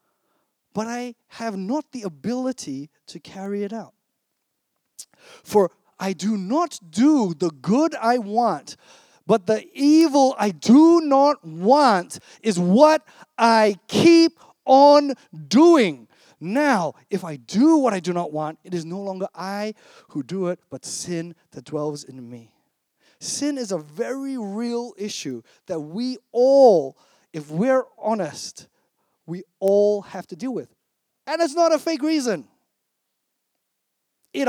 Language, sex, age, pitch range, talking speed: English, male, 30-49, 175-255 Hz, 140 wpm